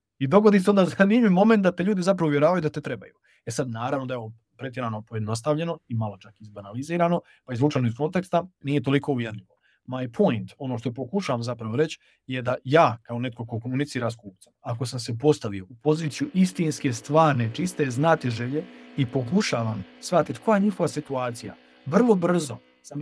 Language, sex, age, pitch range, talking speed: Croatian, male, 40-59, 120-165 Hz, 180 wpm